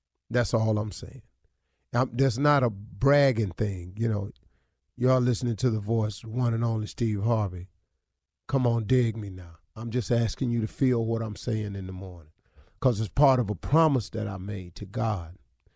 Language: English